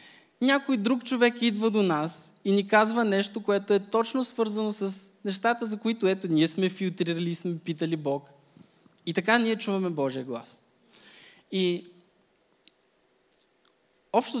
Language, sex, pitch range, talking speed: Bulgarian, male, 150-195 Hz, 135 wpm